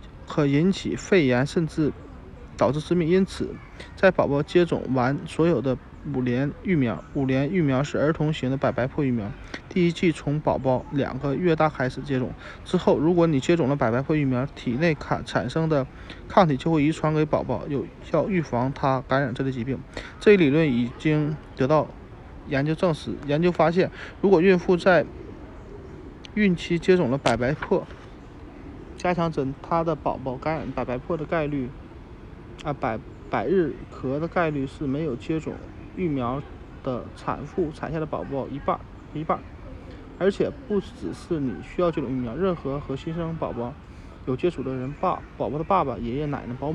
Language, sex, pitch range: Chinese, male, 130-165 Hz